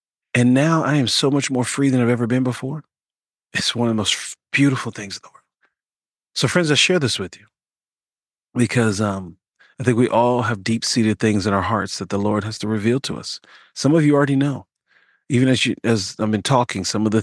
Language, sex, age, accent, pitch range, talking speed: English, male, 40-59, American, 105-130 Hz, 225 wpm